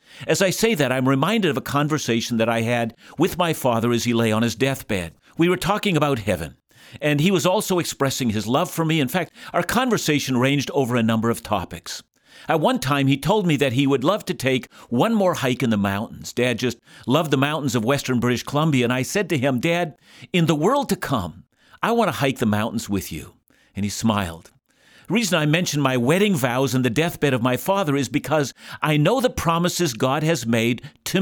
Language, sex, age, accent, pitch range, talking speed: English, male, 50-69, American, 120-175 Hz, 225 wpm